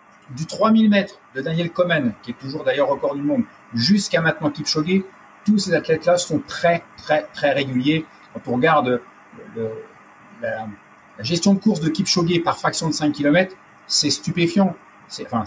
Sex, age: male, 50-69